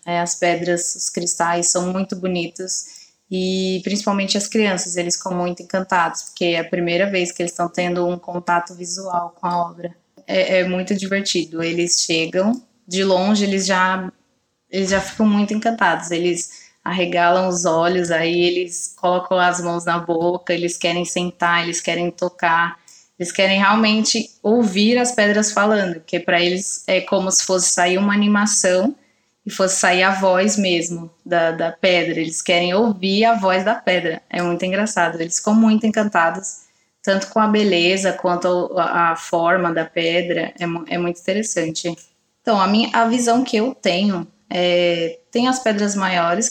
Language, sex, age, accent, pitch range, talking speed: Portuguese, female, 20-39, Brazilian, 175-205 Hz, 165 wpm